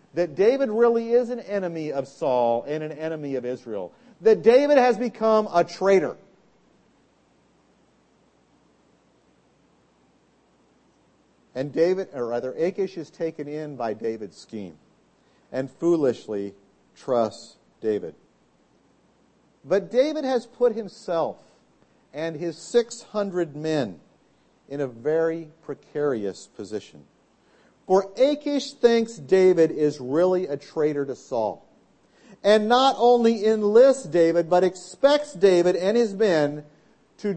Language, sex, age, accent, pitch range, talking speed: English, male, 50-69, American, 150-230 Hz, 110 wpm